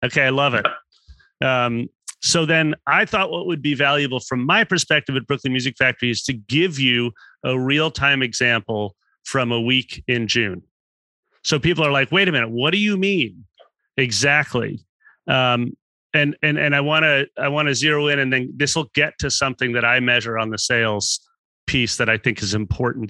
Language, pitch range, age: English, 115-145 Hz, 30-49